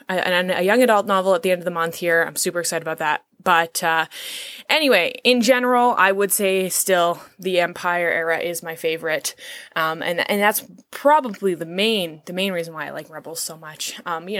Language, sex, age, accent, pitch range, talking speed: English, female, 20-39, American, 185-245 Hz, 205 wpm